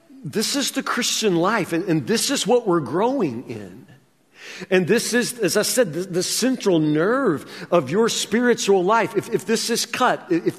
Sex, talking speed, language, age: male, 185 wpm, English, 50-69